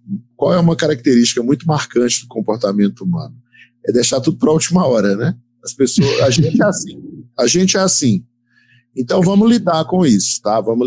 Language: Portuguese